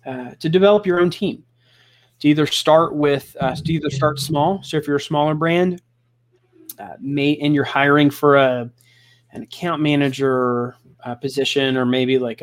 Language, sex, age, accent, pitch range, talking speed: English, male, 20-39, American, 120-140 Hz, 175 wpm